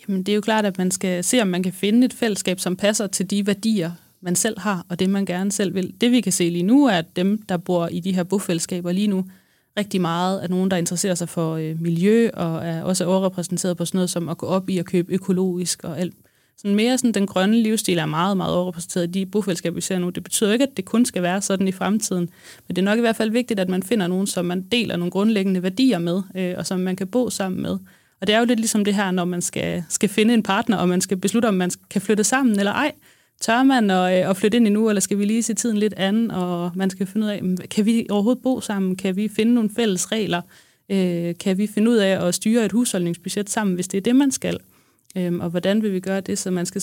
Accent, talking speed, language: native, 265 wpm, Danish